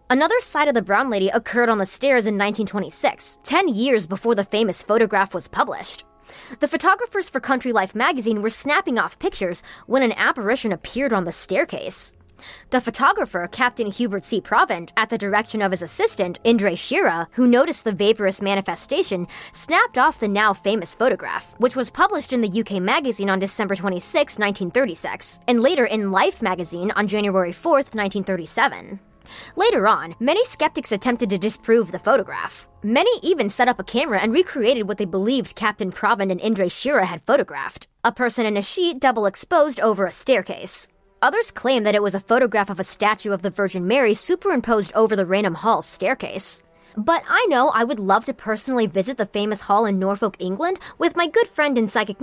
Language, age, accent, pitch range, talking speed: English, 20-39, American, 200-265 Hz, 185 wpm